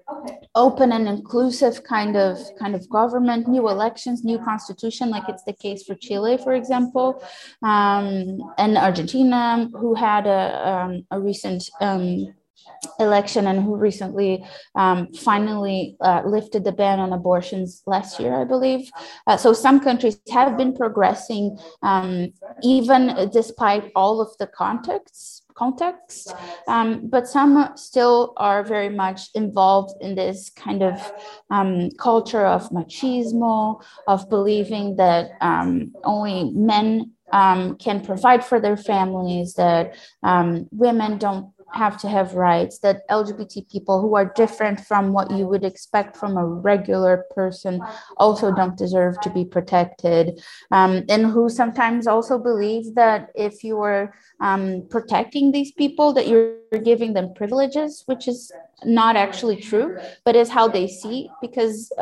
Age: 20-39